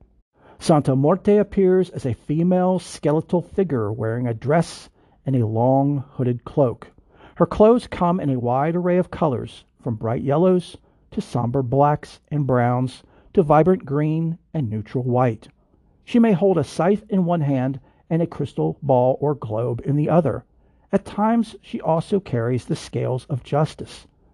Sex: male